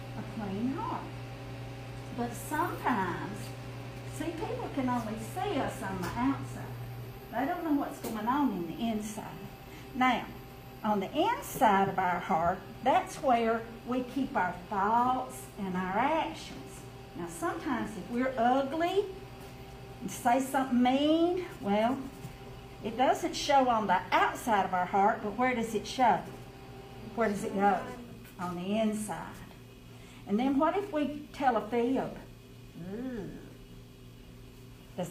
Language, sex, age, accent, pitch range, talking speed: English, female, 50-69, American, 160-255 Hz, 135 wpm